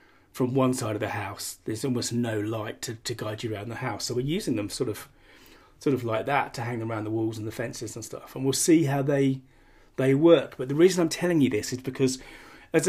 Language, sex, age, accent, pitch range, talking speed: English, male, 30-49, British, 105-130 Hz, 255 wpm